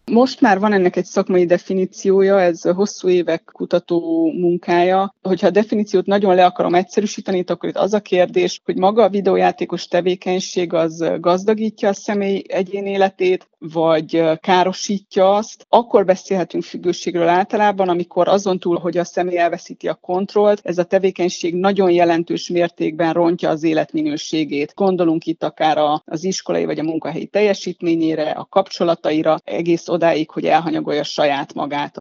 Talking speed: 145 wpm